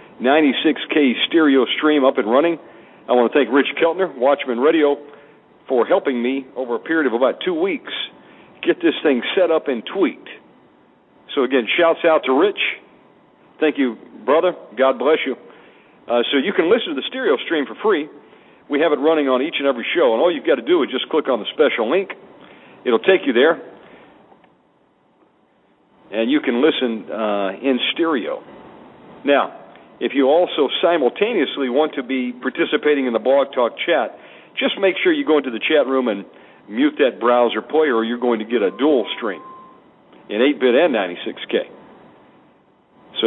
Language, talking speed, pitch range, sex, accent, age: English, 175 wpm, 125-165 Hz, male, American, 50-69